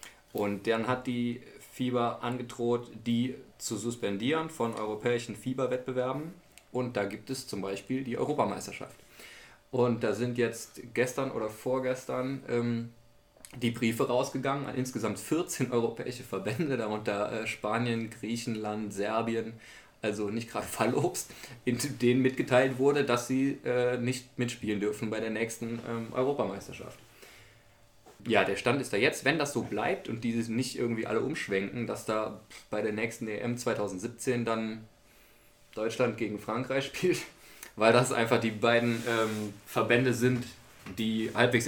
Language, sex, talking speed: German, male, 145 wpm